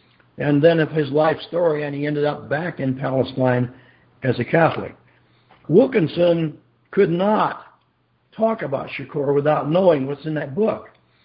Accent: American